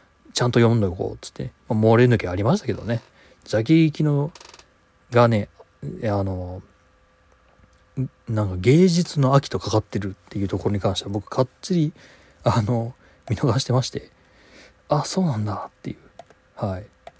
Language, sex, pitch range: Japanese, male, 100-135 Hz